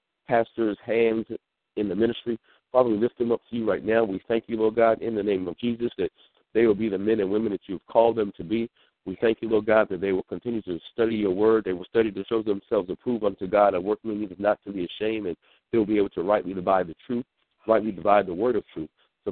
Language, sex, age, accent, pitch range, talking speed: English, male, 50-69, American, 105-115 Hz, 265 wpm